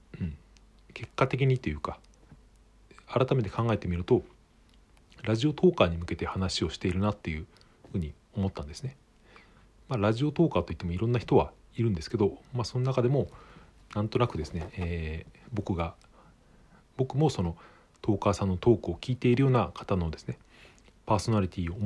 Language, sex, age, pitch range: Japanese, male, 40-59, 85-125 Hz